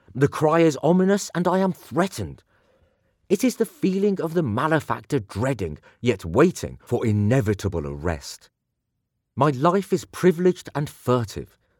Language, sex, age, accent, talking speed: English, male, 40-59, British, 135 wpm